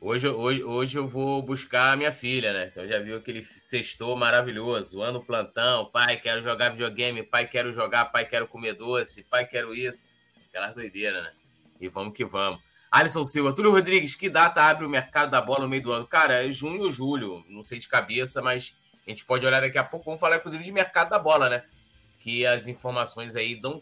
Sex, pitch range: male, 110-130 Hz